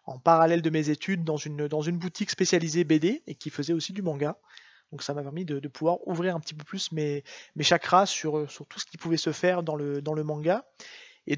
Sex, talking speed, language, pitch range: male, 250 wpm, French, 155-185 Hz